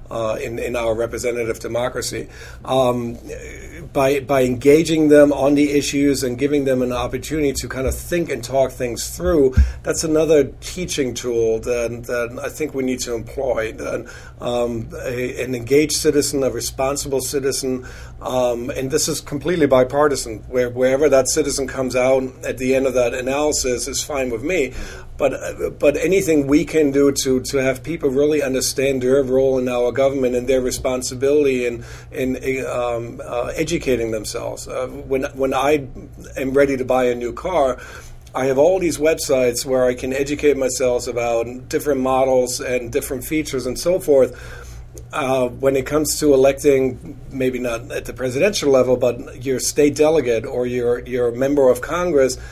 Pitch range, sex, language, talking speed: 125-140 Hz, male, English, 170 wpm